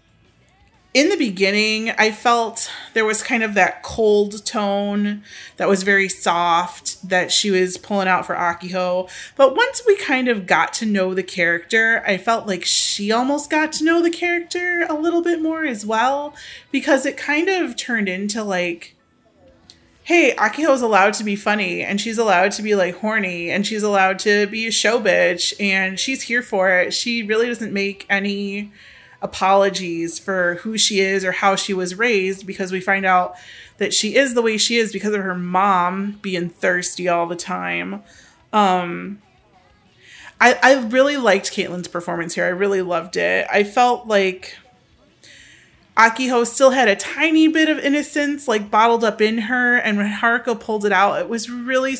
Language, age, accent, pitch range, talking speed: English, 30-49, American, 190-240 Hz, 180 wpm